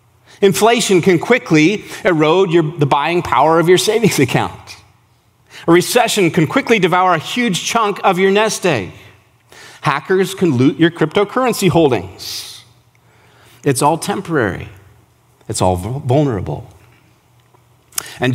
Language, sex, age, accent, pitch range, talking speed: English, male, 40-59, American, 115-175 Hz, 120 wpm